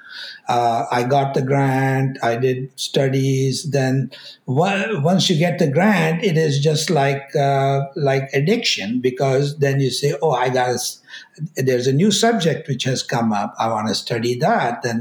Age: 60-79